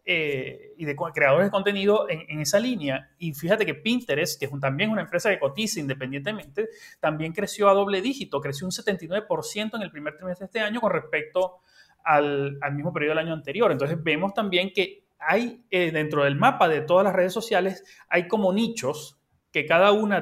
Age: 30-49